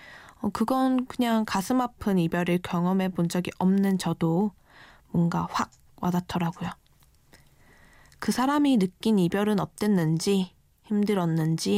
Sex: female